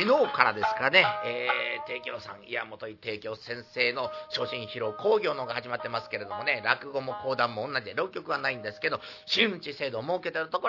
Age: 40-59